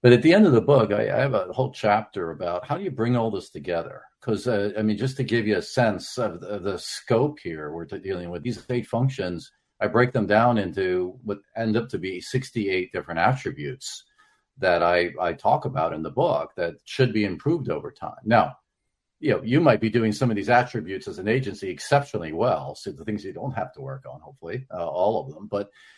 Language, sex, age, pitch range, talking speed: English, male, 50-69, 100-130 Hz, 235 wpm